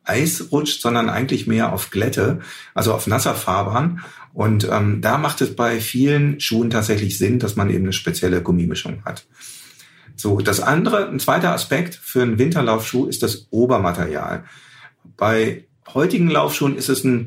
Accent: German